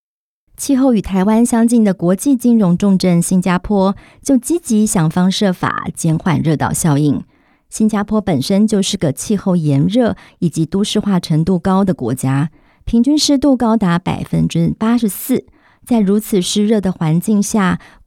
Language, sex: Chinese, male